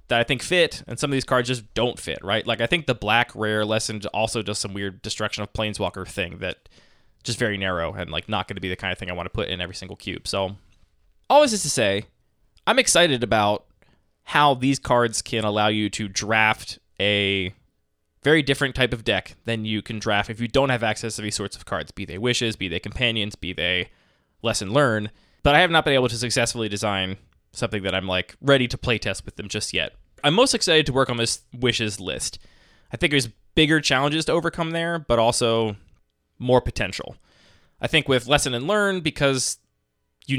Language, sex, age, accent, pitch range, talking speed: English, male, 20-39, American, 100-130 Hz, 220 wpm